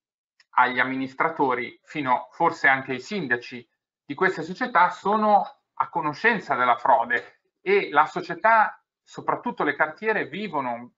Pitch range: 140-210 Hz